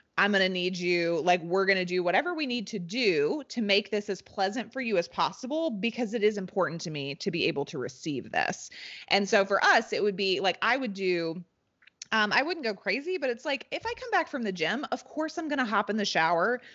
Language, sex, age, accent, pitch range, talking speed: English, female, 20-39, American, 180-245 Hz, 255 wpm